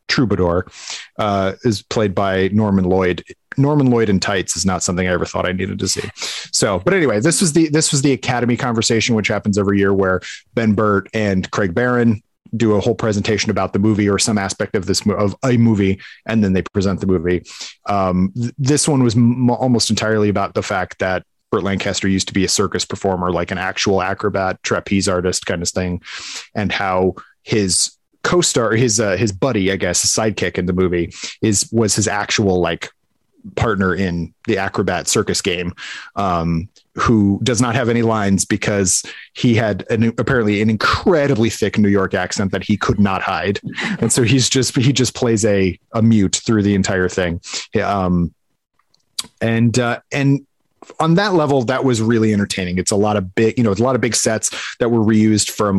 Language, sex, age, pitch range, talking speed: English, male, 30-49, 95-115 Hz, 200 wpm